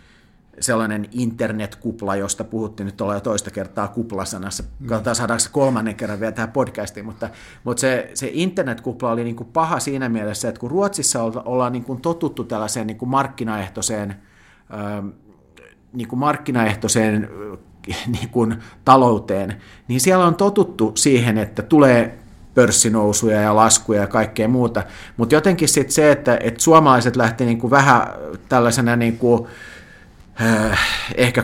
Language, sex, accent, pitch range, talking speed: Finnish, male, native, 110-125 Hz, 140 wpm